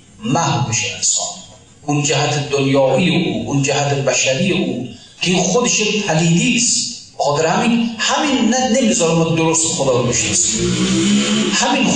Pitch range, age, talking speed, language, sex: 155-200 Hz, 40-59, 120 wpm, Persian, male